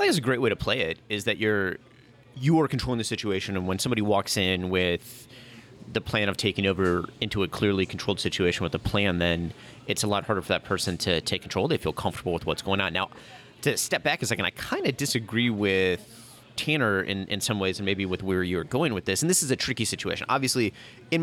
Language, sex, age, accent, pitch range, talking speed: English, male, 30-49, American, 95-120 Hz, 245 wpm